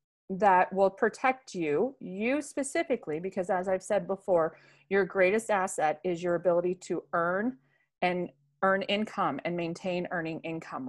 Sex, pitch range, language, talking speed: female, 170-215 Hz, English, 145 wpm